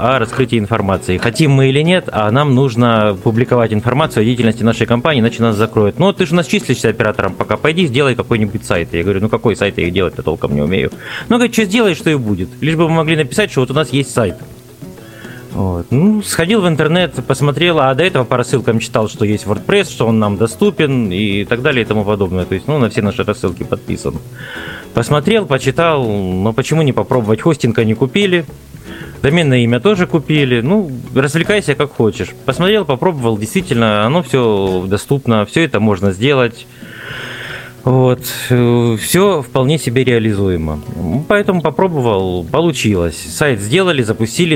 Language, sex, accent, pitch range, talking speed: Russian, male, native, 110-150 Hz, 175 wpm